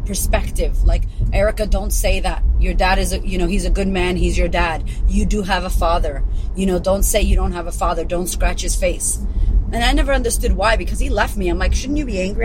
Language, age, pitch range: English, 30-49, 165-205 Hz